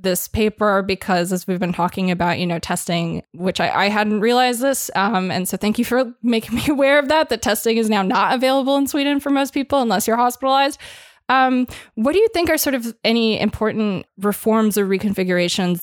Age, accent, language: 20-39, American, English